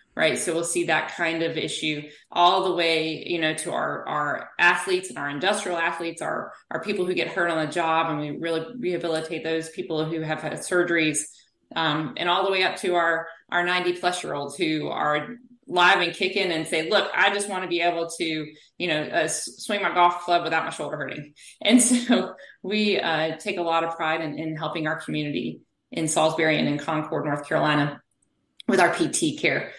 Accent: American